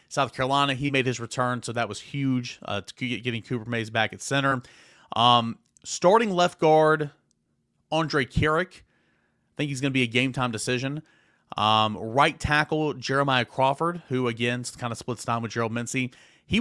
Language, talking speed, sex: English, 175 wpm, male